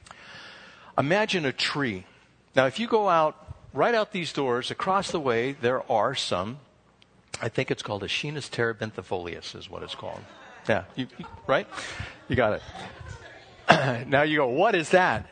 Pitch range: 115-160 Hz